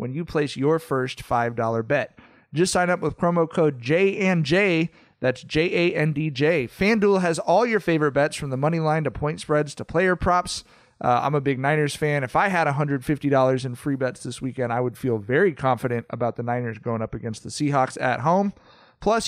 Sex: male